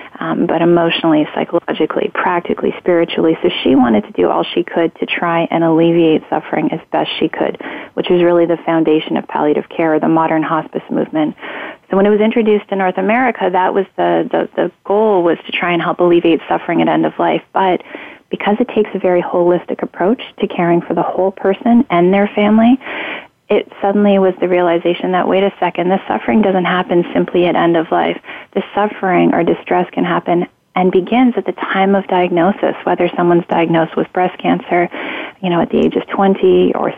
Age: 30-49